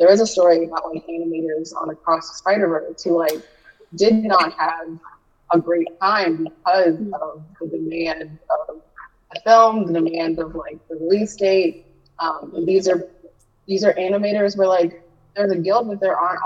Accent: American